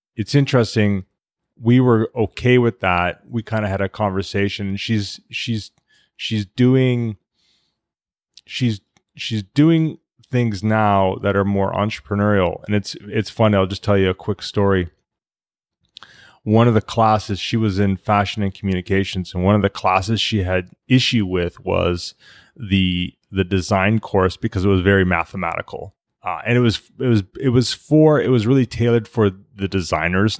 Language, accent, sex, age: English, American, male, 30-49